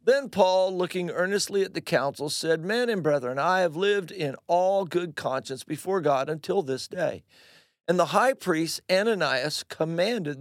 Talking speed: 165 wpm